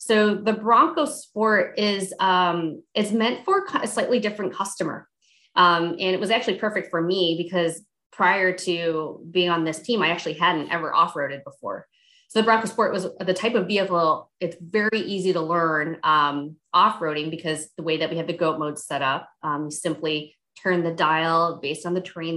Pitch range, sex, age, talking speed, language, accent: 155-205 Hz, female, 20-39, 190 wpm, English, American